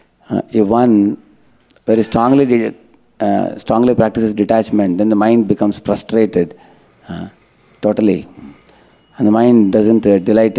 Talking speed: 120 wpm